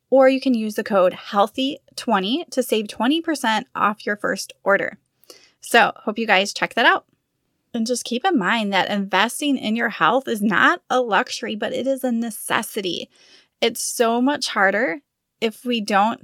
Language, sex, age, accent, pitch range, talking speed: English, female, 20-39, American, 195-245 Hz, 175 wpm